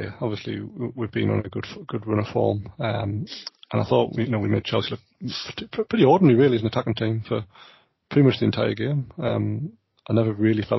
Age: 30-49